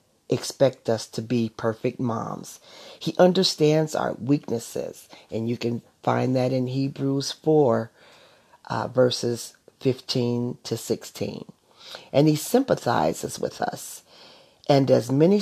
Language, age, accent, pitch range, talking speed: English, 50-69, American, 120-150 Hz, 120 wpm